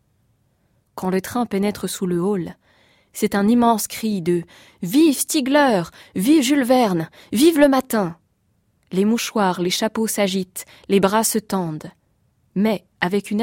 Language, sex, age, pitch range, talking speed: French, female, 20-39, 175-215 Hz, 145 wpm